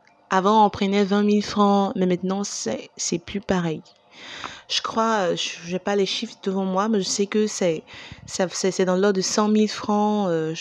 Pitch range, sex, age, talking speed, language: 190-230 Hz, female, 20-39, 205 wpm, French